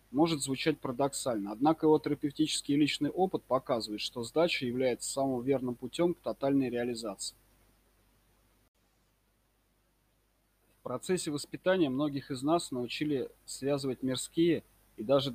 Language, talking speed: Russian, 115 wpm